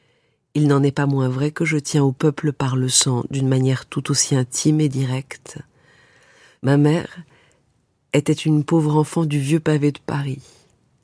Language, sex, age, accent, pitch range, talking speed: French, female, 50-69, French, 140-170 Hz, 175 wpm